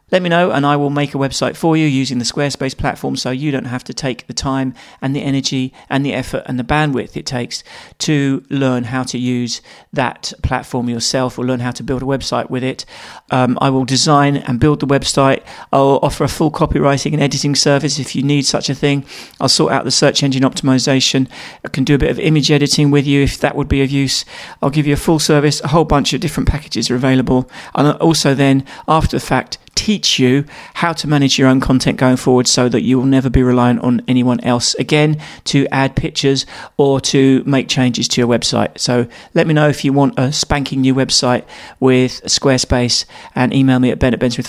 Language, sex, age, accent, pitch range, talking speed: English, male, 40-59, British, 130-145 Hz, 225 wpm